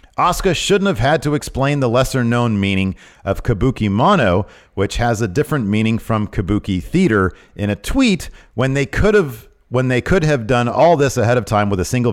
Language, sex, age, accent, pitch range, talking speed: English, male, 40-59, American, 95-135 Hz, 200 wpm